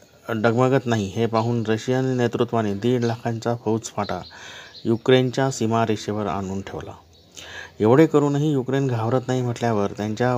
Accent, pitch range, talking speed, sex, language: native, 110-135 Hz, 115 wpm, male, Marathi